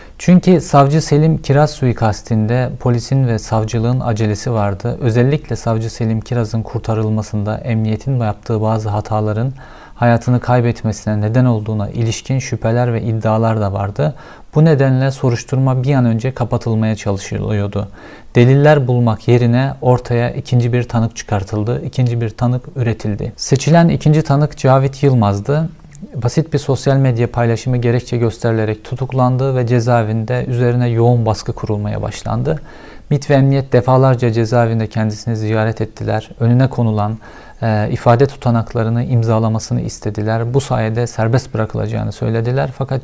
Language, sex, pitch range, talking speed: Turkish, male, 110-130 Hz, 125 wpm